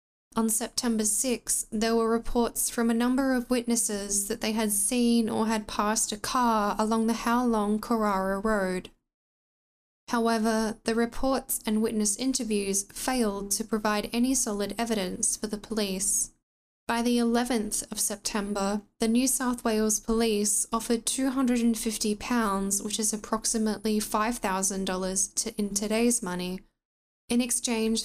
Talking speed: 130 wpm